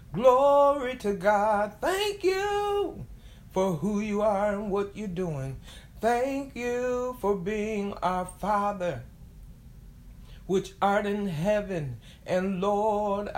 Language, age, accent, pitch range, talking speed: English, 60-79, American, 190-235 Hz, 110 wpm